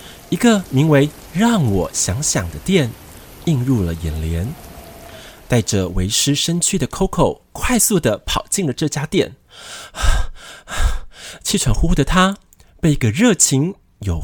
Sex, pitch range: male, 105-175 Hz